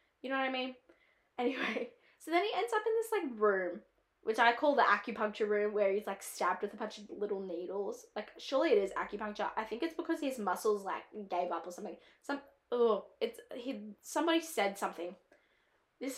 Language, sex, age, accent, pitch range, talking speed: English, female, 10-29, Australian, 205-275 Hz, 205 wpm